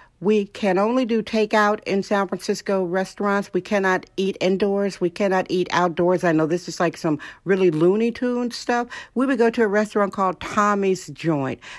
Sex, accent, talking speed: female, American, 185 wpm